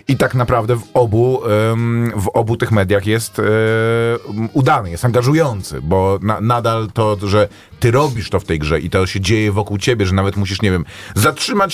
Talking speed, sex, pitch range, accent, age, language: 180 wpm, male, 95-120 Hz, native, 30-49, Polish